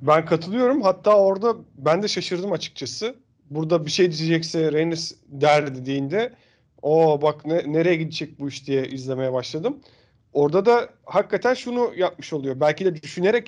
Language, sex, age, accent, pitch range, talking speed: Turkish, male, 40-59, native, 140-190 Hz, 150 wpm